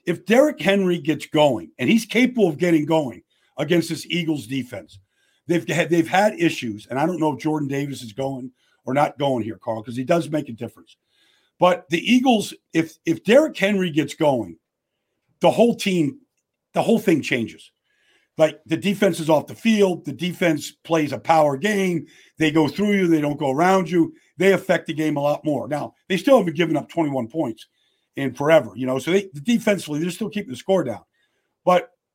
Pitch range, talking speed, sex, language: 145-195 Hz, 200 wpm, male, English